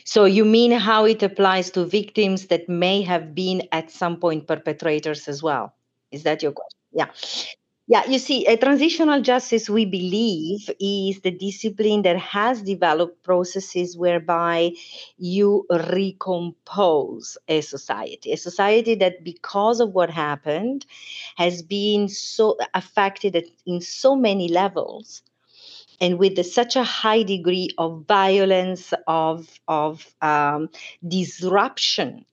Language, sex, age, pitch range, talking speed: Ukrainian, female, 40-59, 160-200 Hz, 130 wpm